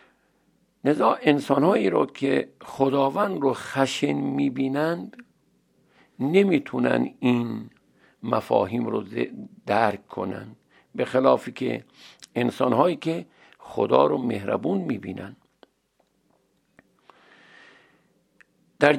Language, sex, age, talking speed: Persian, male, 50-69, 75 wpm